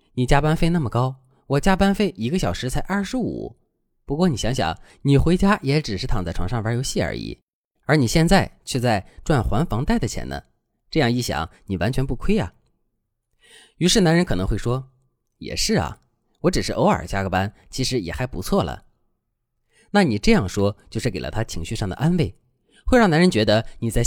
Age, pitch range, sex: 20-39, 110-165 Hz, male